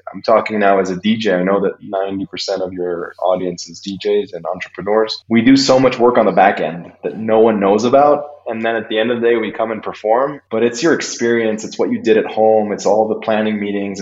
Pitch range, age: 95-110 Hz, 20-39